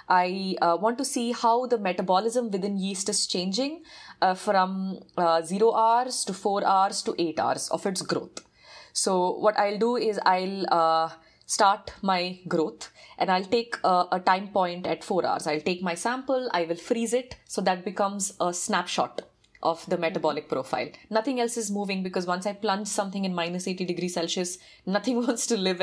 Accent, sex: Indian, female